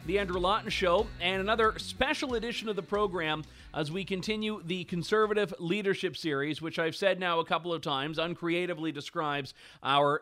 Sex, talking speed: male, 170 wpm